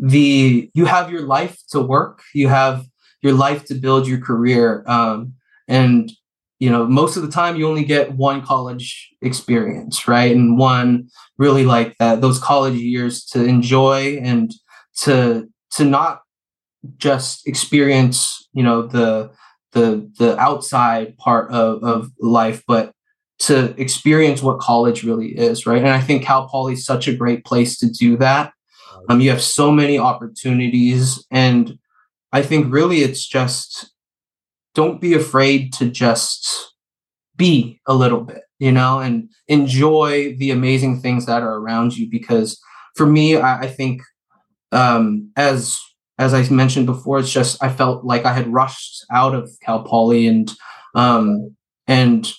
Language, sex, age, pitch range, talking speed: English, male, 20-39, 120-135 Hz, 155 wpm